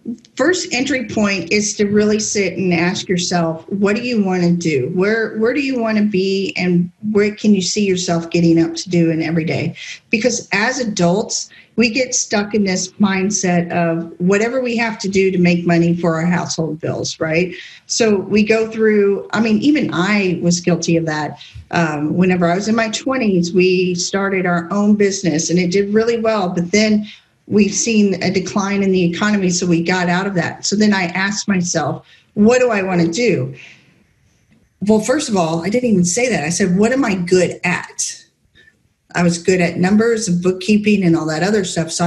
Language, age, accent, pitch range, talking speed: English, 40-59, American, 170-210 Hz, 205 wpm